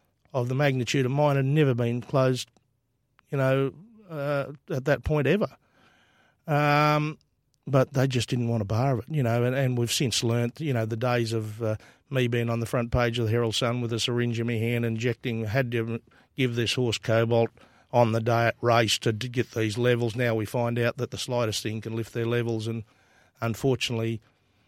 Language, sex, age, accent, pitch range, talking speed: English, male, 50-69, Australian, 115-130 Hz, 210 wpm